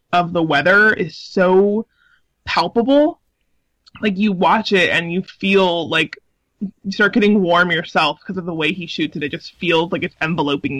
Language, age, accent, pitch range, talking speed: English, 20-39, American, 155-195 Hz, 180 wpm